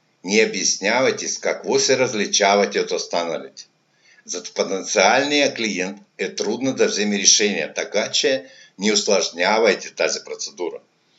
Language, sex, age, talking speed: Bulgarian, male, 60-79, 130 wpm